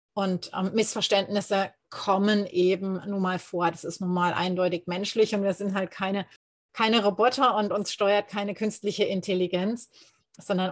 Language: German